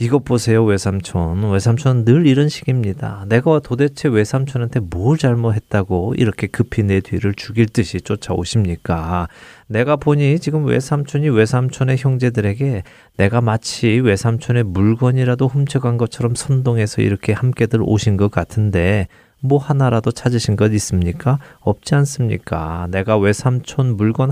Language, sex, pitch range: Korean, male, 105-135 Hz